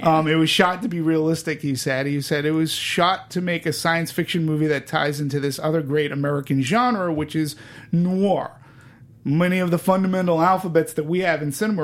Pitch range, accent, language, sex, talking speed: 135-175 Hz, American, English, male, 210 wpm